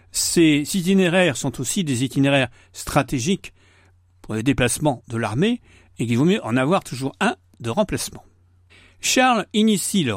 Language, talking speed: French, 150 wpm